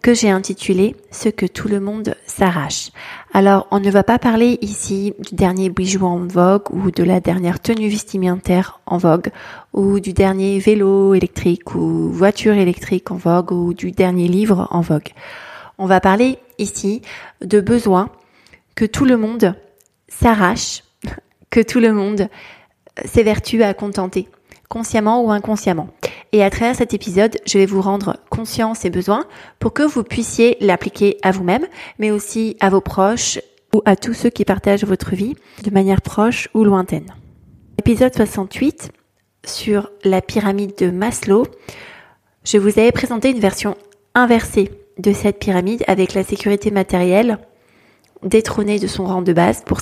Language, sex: French, female